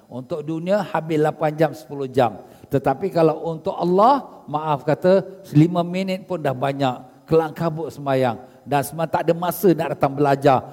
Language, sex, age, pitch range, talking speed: Malay, male, 50-69, 140-185 Hz, 155 wpm